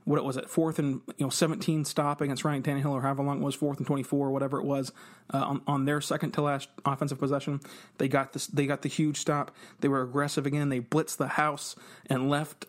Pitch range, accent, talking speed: 135-165 Hz, American, 245 wpm